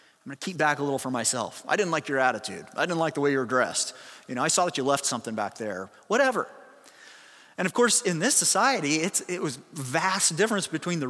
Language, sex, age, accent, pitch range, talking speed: English, male, 30-49, American, 155-215 Hz, 250 wpm